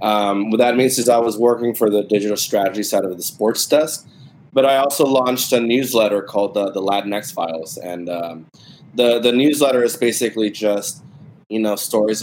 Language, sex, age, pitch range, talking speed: English, male, 20-39, 100-120 Hz, 190 wpm